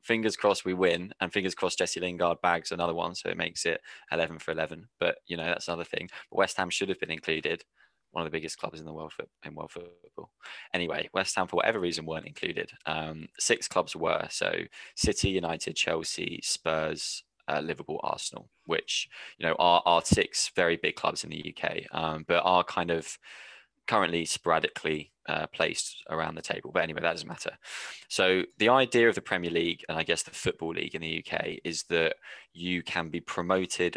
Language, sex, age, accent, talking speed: English, male, 20-39, British, 205 wpm